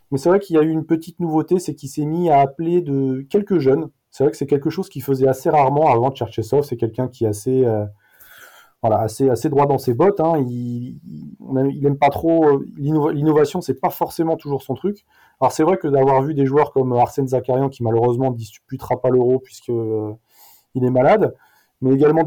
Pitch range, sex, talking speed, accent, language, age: 125-150 Hz, male, 220 wpm, French, French, 20-39